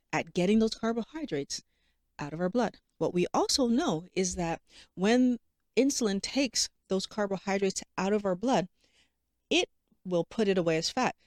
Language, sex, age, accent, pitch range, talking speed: English, female, 40-59, American, 180-245 Hz, 160 wpm